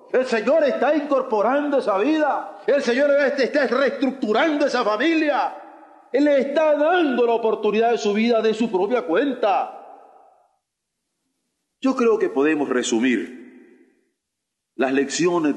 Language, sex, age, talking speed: Spanish, male, 40-59, 125 wpm